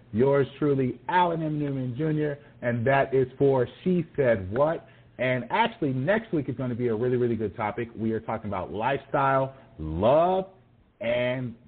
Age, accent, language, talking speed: 40-59, American, English, 170 wpm